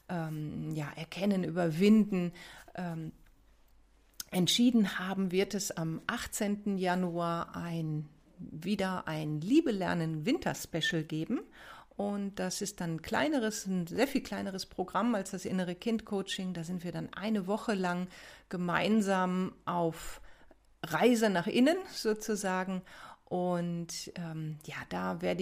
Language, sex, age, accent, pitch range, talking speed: German, female, 40-59, German, 170-200 Hz, 120 wpm